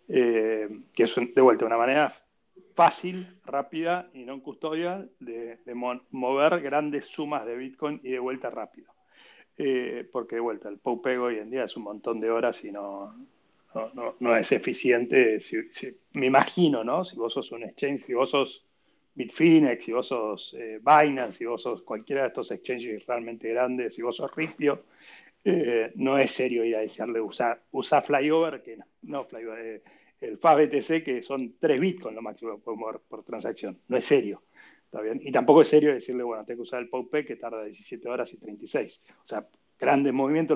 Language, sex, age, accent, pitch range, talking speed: Spanish, male, 30-49, Argentinian, 115-155 Hz, 195 wpm